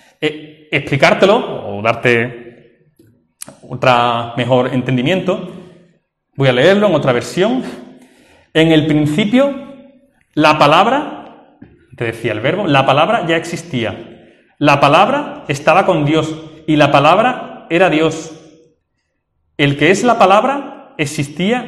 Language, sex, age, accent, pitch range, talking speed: Spanish, male, 30-49, Spanish, 120-175 Hz, 115 wpm